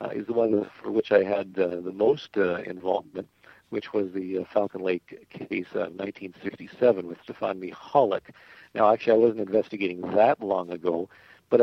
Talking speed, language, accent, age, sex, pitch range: 175 wpm, English, American, 50-69, male, 95-110 Hz